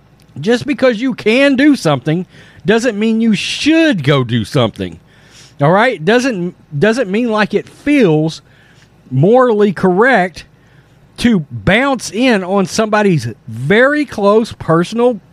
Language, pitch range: English, 145-205 Hz